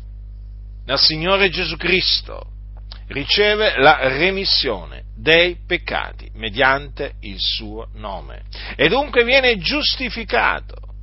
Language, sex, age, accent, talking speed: Italian, male, 50-69, native, 95 wpm